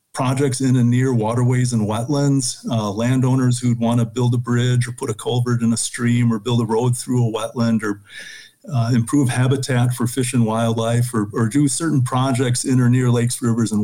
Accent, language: American, English